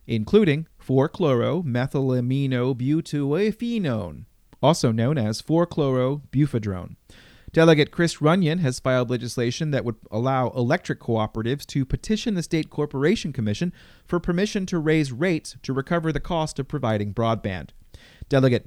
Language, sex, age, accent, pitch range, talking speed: English, male, 30-49, American, 115-155 Hz, 120 wpm